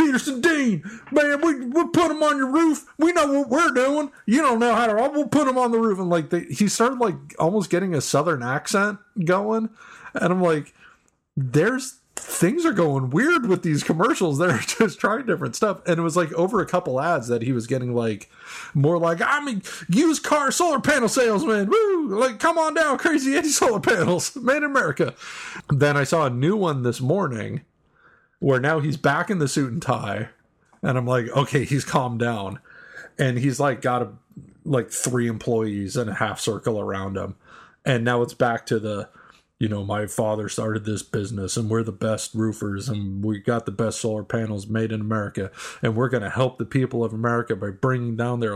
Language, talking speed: English, 205 wpm